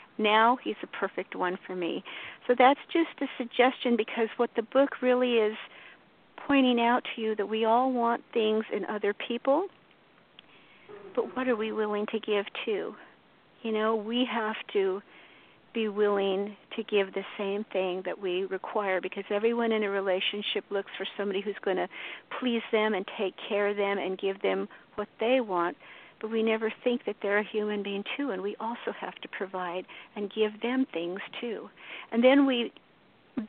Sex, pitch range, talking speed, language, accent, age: female, 200-235 Hz, 180 wpm, English, American, 50-69